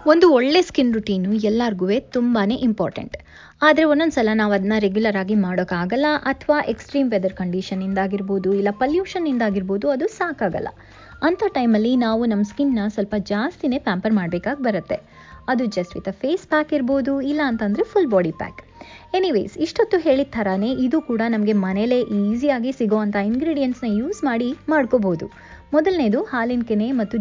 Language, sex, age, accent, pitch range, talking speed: Kannada, female, 20-39, native, 200-290 Hz, 140 wpm